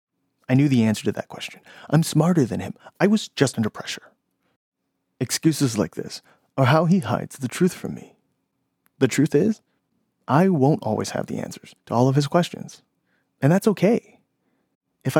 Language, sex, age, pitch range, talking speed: English, male, 30-49, 125-180 Hz, 180 wpm